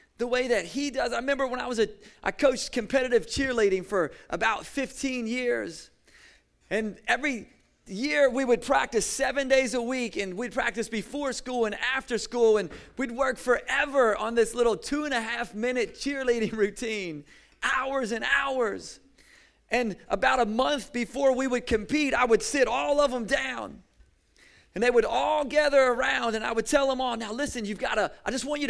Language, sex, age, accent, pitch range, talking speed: English, male, 30-49, American, 215-270 Hz, 190 wpm